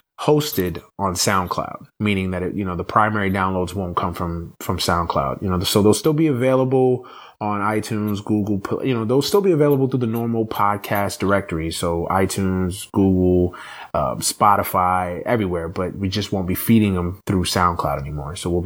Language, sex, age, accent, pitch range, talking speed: English, male, 20-39, American, 95-110 Hz, 175 wpm